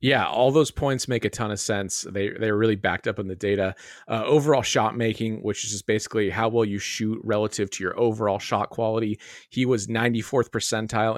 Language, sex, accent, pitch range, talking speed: English, male, American, 105-130 Hz, 210 wpm